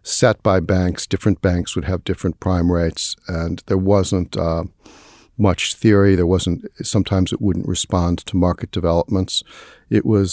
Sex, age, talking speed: male, 60-79, 155 wpm